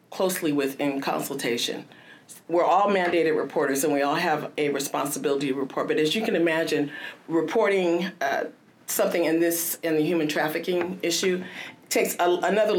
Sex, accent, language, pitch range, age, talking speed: female, American, English, 140-170 Hz, 40-59, 155 wpm